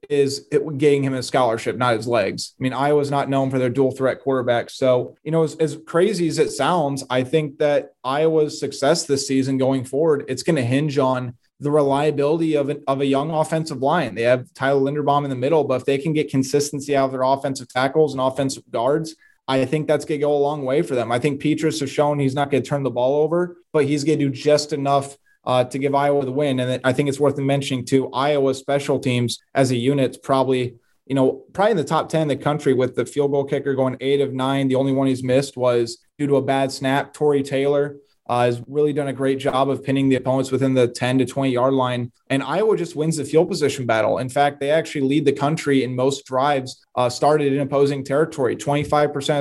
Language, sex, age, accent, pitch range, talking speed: English, male, 20-39, American, 130-145 Hz, 240 wpm